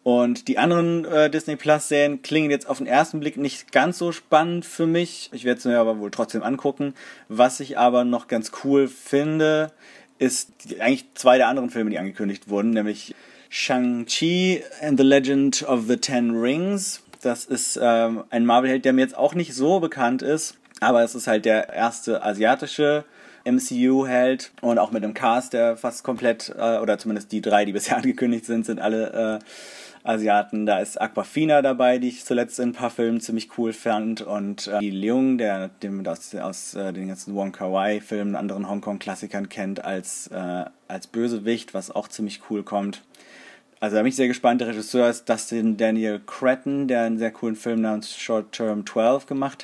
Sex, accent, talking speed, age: male, German, 185 wpm, 30-49